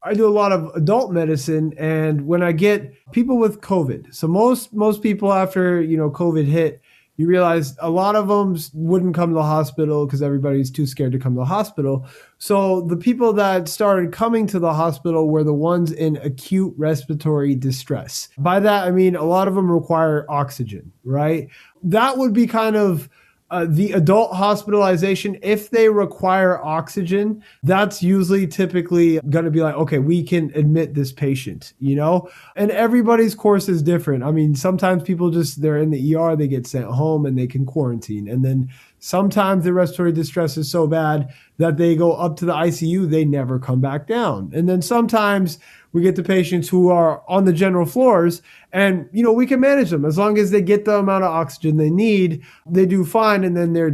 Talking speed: 200 wpm